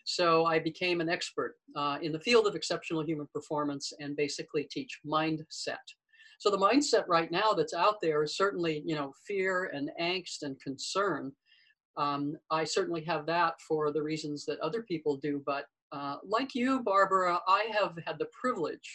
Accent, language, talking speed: American, English, 175 wpm